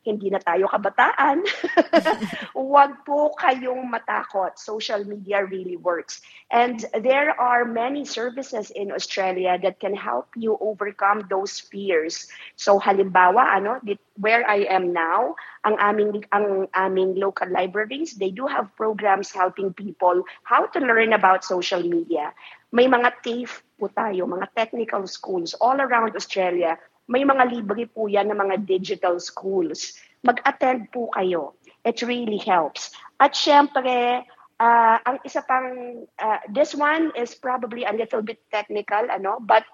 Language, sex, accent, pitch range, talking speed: Filipino, female, native, 195-245 Hz, 140 wpm